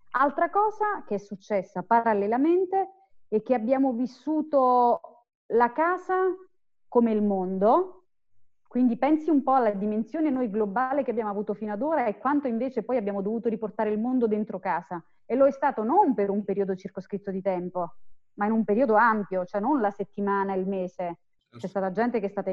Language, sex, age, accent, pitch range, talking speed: Italian, female, 30-49, native, 195-265 Hz, 180 wpm